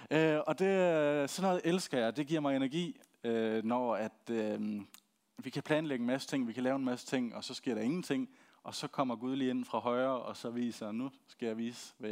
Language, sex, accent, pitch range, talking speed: Danish, male, native, 120-155 Hz, 245 wpm